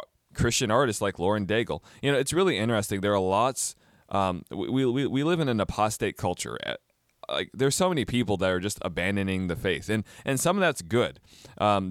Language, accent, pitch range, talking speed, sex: English, American, 95-125 Hz, 205 wpm, male